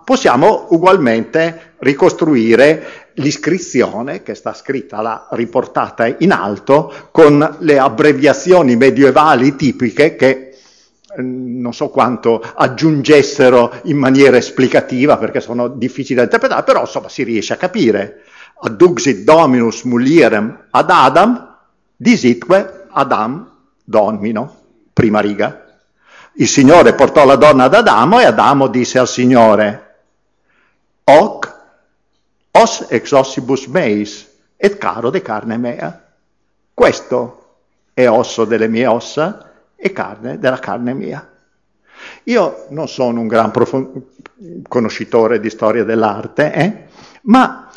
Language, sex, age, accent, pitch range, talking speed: Italian, male, 50-69, native, 120-150 Hz, 110 wpm